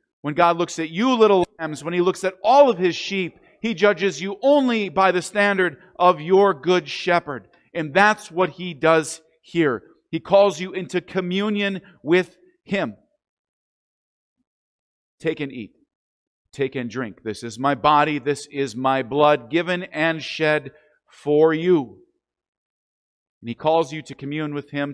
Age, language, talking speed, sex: 50-69, English, 160 wpm, male